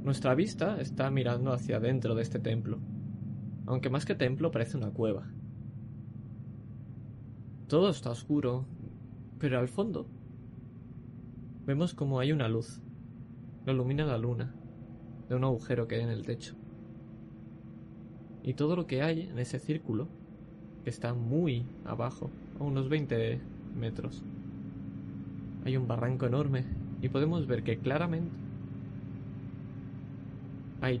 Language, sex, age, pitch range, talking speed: Spanish, male, 20-39, 115-135 Hz, 125 wpm